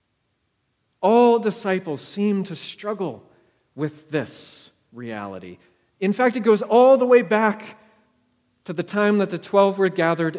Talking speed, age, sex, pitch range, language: 140 wpm, 40-59, male, 150-230 Hz, English